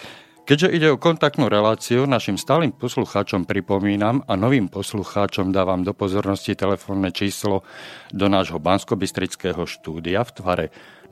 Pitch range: 95-115 Hz